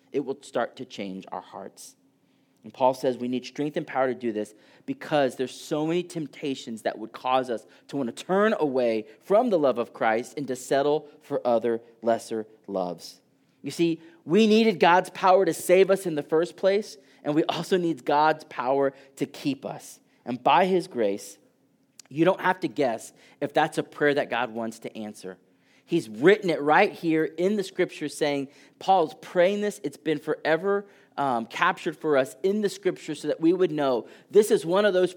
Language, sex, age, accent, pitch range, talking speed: English, male, 30-49, American, 115-165 Hz, 195 wpm